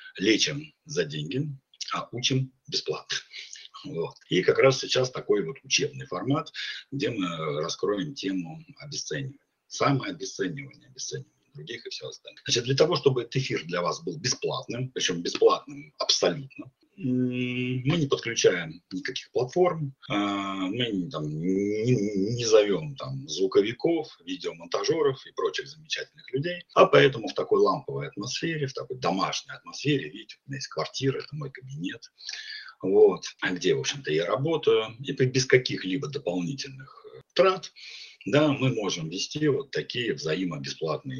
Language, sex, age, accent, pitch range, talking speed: Russian, male, 40-59, native, 125-180 Hz, 135 wpm